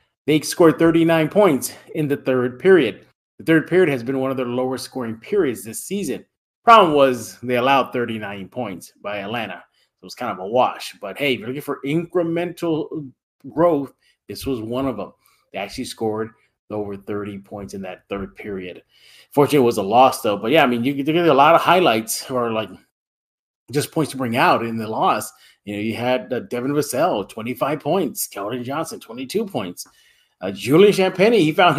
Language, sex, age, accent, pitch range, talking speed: English, male, 30-49, American, 110-165 Hz, 195 wpm